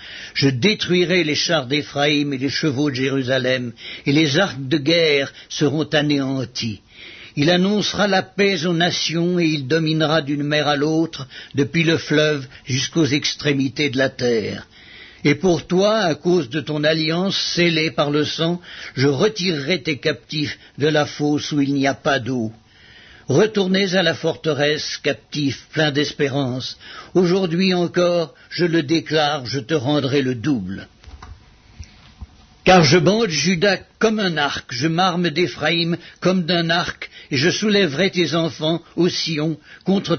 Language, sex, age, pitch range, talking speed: French, male, 60-79, 140-175 Hz, 150 wpm